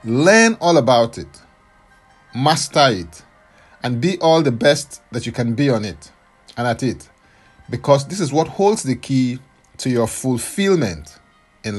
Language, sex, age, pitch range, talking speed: English, male, 40-59, 105-155 Hz, 160 wpm